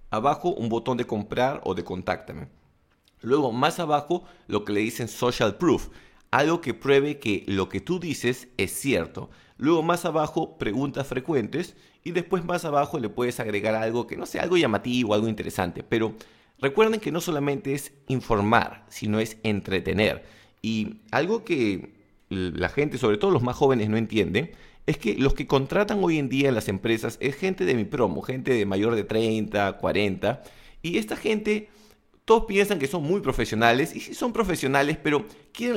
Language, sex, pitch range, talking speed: English, male, 110-150 Hz, 180 wpm